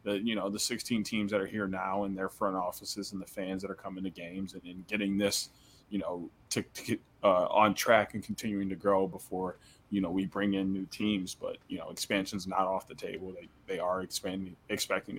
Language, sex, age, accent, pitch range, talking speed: English, male, 20-39, American, 95-105 Hz, 215 wpm